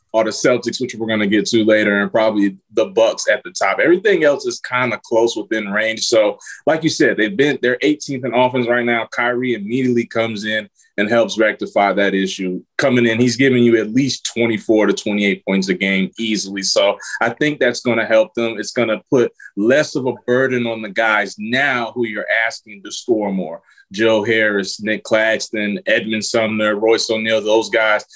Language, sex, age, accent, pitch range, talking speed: English, male, 20-39, American, 105-125 Hz, 200 wpm